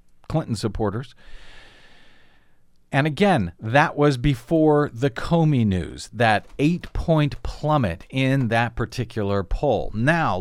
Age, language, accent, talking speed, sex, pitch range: 50-69, English, American, 110 wpm, male, 105-150 Hz